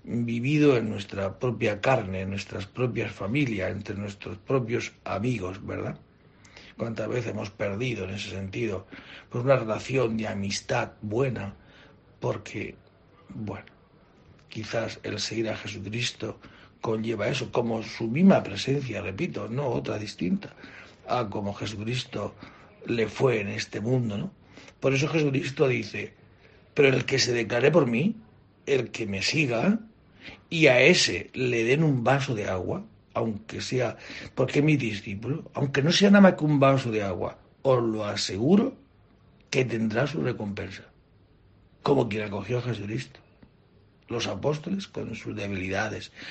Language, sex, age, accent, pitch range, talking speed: Spanish, male, 60-79, Spanish, 105-130 Hz, 140 wpm